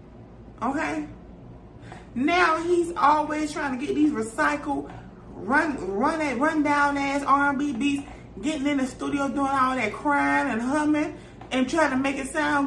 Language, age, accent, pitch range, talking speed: English, 30-49, American, 240-300 Hz, 145 wpm